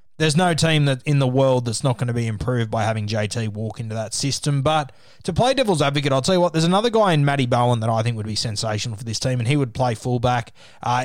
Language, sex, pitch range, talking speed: English, male, 115-145 Hz, 270 wpm